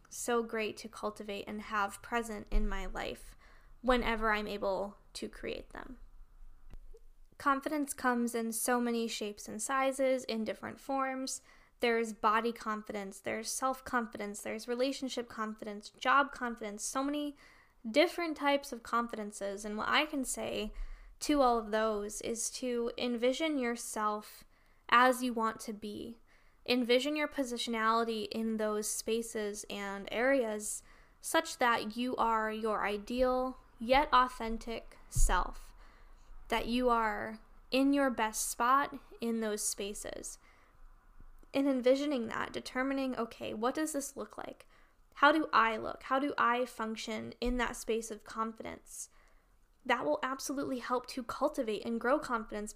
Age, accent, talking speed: 10-29, American, 135 wpm